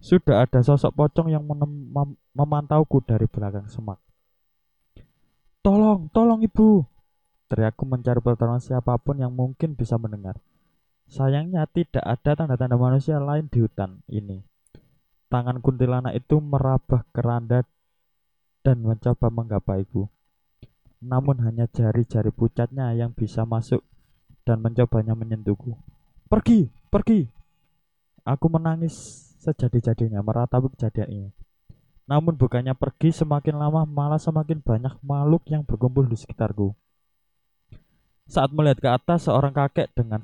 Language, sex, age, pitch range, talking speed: Indonesian, male, 20-39, 115-150 Hz, 115 wpm